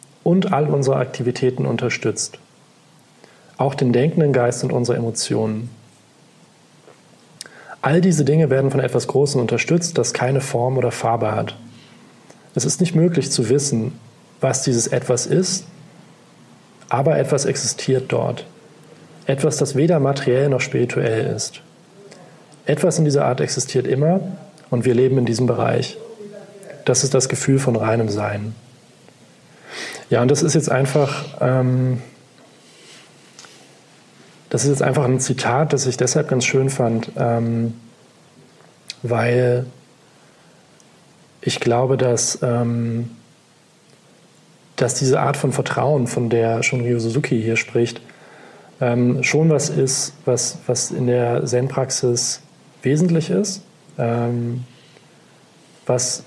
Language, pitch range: German, 120-150 Hz